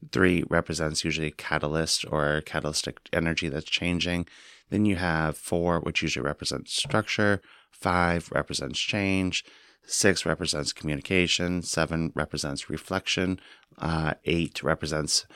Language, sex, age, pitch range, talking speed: English, male, 30-49, 80-95 Hz, 115 wpm